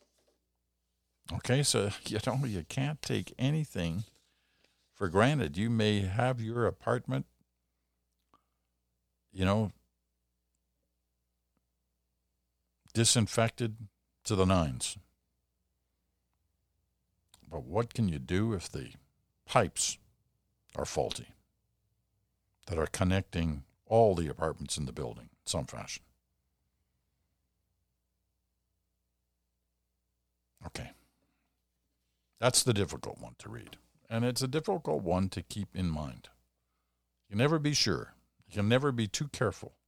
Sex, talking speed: male, 105 wpm